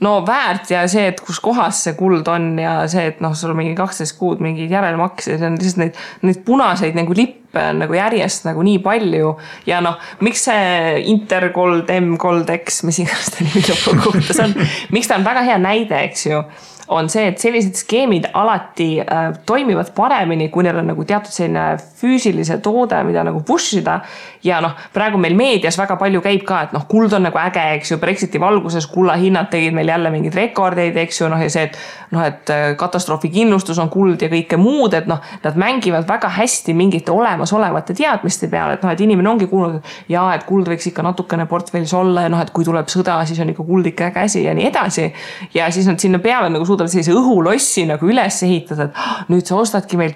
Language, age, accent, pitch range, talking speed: English, 20-39, Finnish, 165-200 Hz, 195 wpm